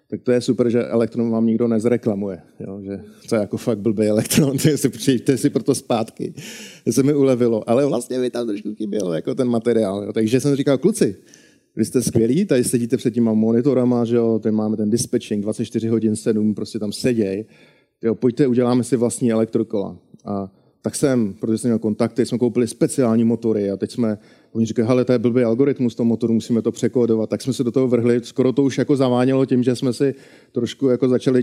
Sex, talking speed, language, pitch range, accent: male, 205 wpm, Czech, 115-130 Hz, native